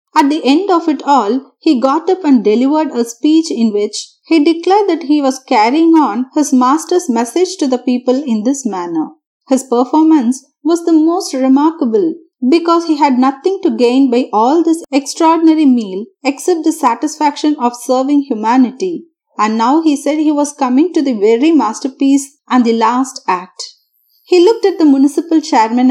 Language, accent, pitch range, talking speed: Tamil, native, 250-330 Hz, 175 wpm